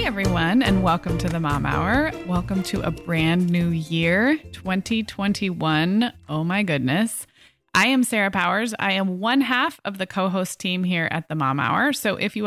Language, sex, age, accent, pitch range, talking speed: English, female, 20-39, American, 170-225 Hz, 180 wpm